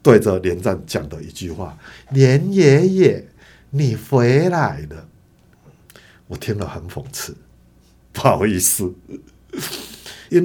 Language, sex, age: Chinese, male, 50-69